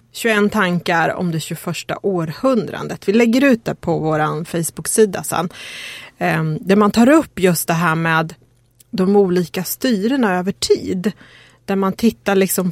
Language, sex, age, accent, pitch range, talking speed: Swedish, female, 30-49, native, 170-215 Hz, 145 wpm